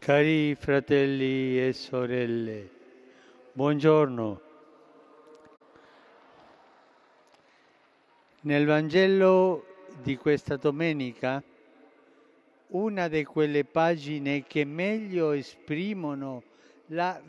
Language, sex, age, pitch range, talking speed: Italian, male, 60-79, 140-185 Hz, 60 wpm